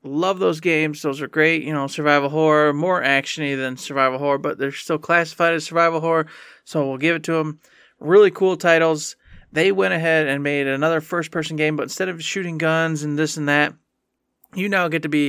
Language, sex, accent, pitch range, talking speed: English, male, American, 150-180 Hz, 210 wpm